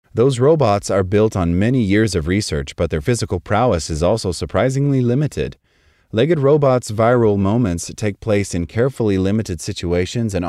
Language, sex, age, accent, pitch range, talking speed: English, male, 30-49, American, 85-110 Hz, 160 wpm